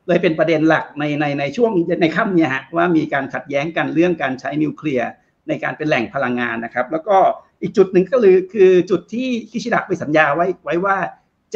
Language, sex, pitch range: Thai, male, 155-215 Hz